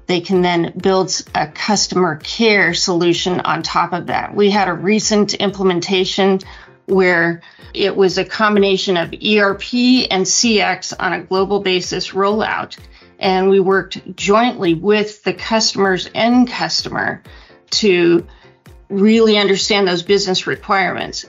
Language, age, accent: English, 40-59, American